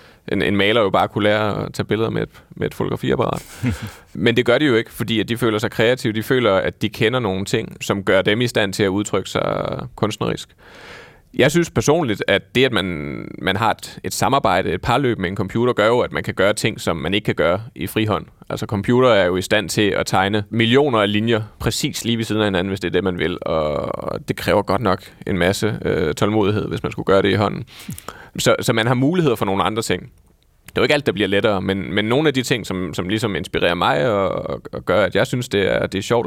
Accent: native